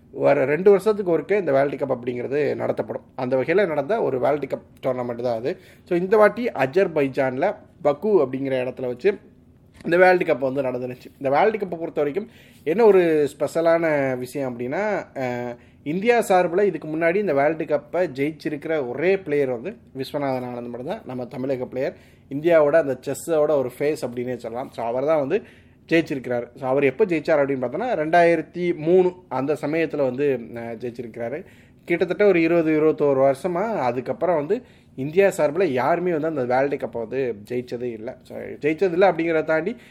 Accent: native